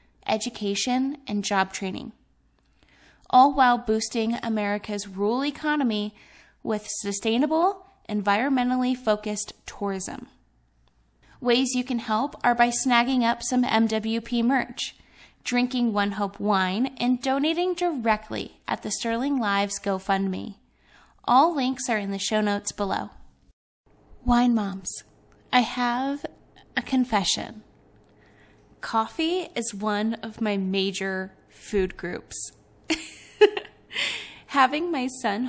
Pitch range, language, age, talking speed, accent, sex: 205-255 Hz, English, 10-29, 105 wpm, American, female